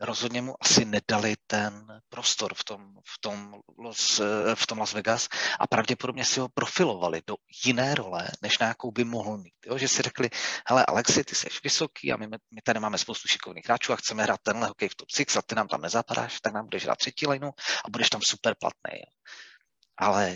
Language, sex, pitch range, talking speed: Czech, male, 105-125 Hz, 205 wpm